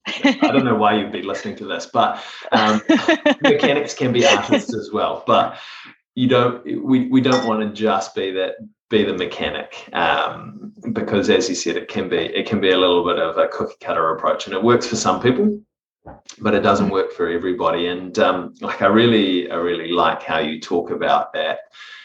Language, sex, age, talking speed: English, male, 20-39, 205 wpm